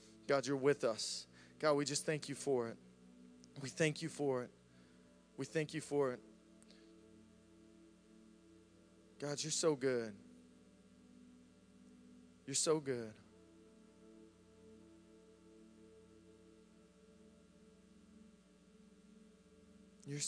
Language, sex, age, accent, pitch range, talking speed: English, male, 20-39, American, 105-145 Hz, 85 wpm